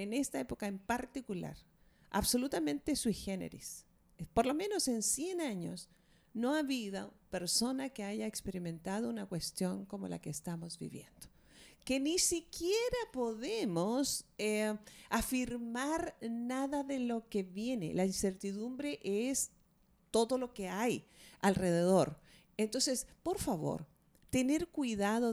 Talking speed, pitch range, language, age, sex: 125 wpm, 190-260 Hz, Spanish, 40-59, female